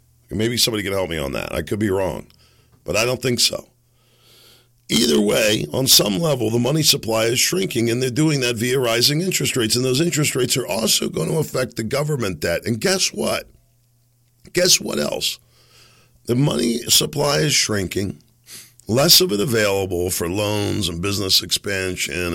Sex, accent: male, American